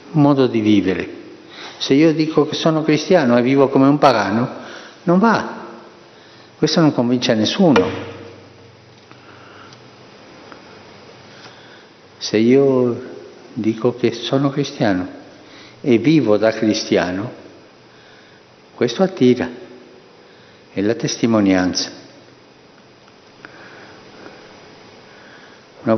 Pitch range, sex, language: 110-145 Hz, male, Italian